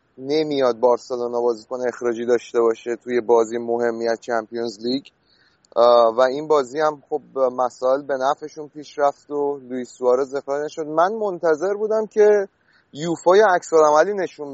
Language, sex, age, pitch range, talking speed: Persian, male, 30-49, 125-155 Hz, 140 wpm